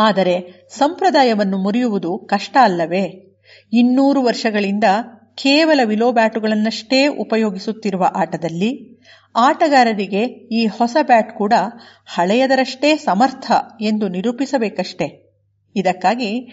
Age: 50-69